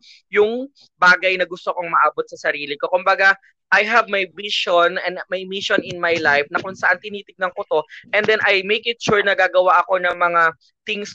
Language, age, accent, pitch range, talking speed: English, 20-39, Filipino, 185-230 Hz, 205 wpm